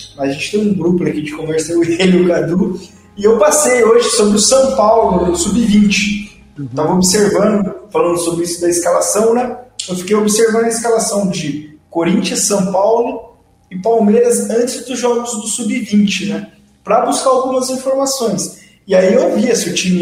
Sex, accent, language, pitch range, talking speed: male, Brazilian, Portuguese, 175-240 Hz, 160 wpm